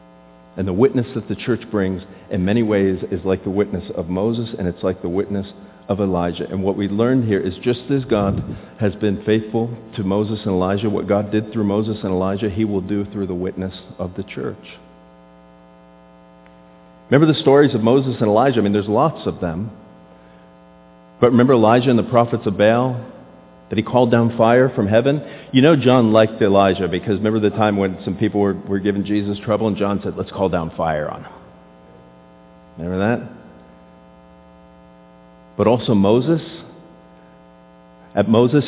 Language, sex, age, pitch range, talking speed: English, male, 40-59, 85-115 Hz, 180 wpm